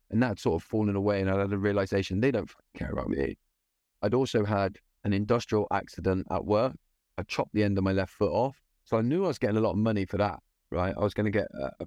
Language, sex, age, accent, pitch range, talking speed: English, male, 30-49, British, 90-105 Hz, 265 wpm